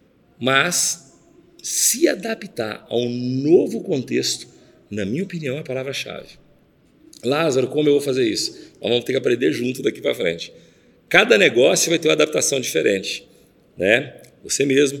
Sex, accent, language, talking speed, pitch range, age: male, Brazilian, Portuguese, 150 wpm, 110-150 Hz, 40-59